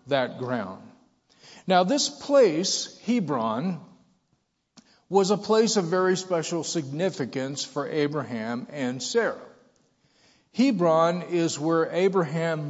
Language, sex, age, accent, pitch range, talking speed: English, male, 50-69, American, 135-185 Hz, 100 wpm